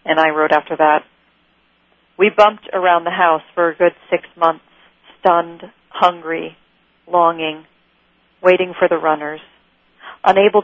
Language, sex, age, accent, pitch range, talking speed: English, female, 40-59, American, 170-195 Hz, 130 wpm